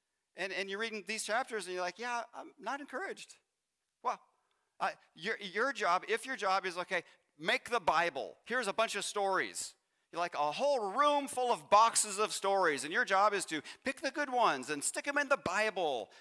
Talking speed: 205 wpm